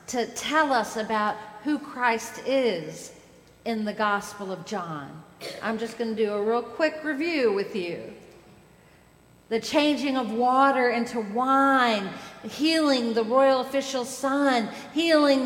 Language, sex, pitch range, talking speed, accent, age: English, female, 215-285 Hz, 135 wpm, American, 50-69